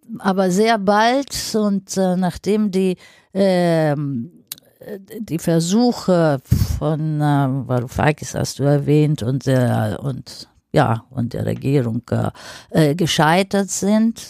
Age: 50-69